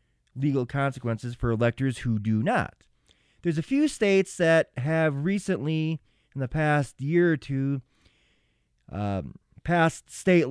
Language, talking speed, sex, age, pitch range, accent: English, 130 wpm, male, 20-39, 115-160 Hz, American